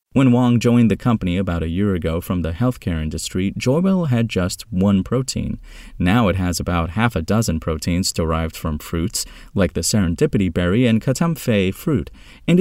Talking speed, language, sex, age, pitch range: 175 wpm, English, male, 30-49, 90-130 Hz